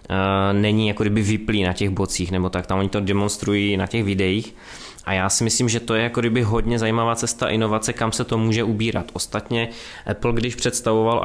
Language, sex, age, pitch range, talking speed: Czech, male, 20-39, 100-110 Hz, 205 wpm